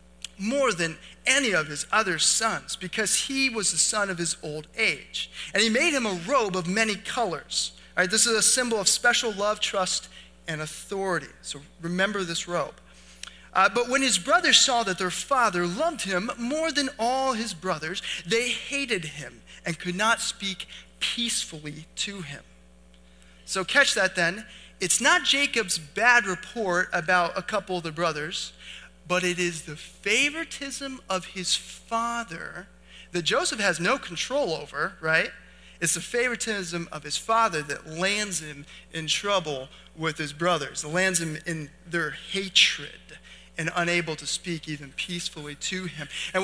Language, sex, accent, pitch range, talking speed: English, male, American, 160-225 Hz, 160 wpm